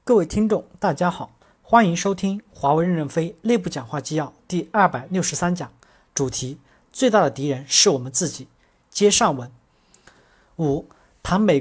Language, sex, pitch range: Chinese, male, 140-190 Hz